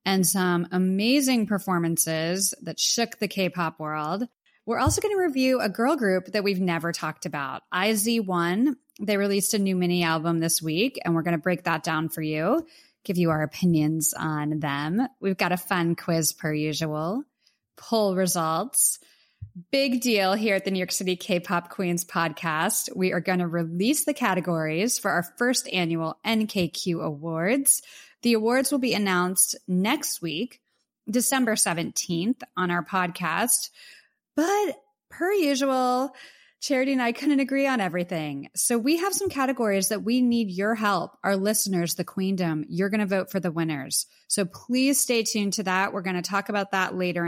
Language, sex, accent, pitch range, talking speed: English, female, American, 175-235 Hz, 170 wpm